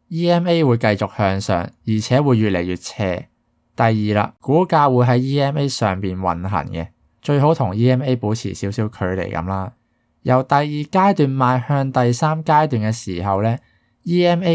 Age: 20-39